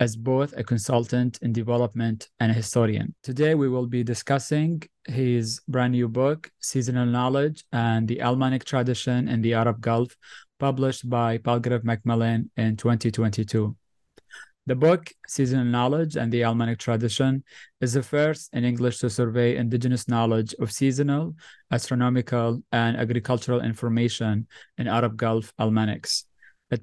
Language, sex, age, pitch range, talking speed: English, male, 20-39, 115-130 Hz, 140 wpm